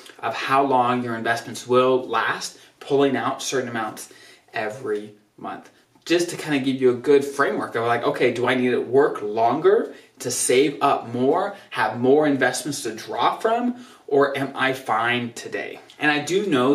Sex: male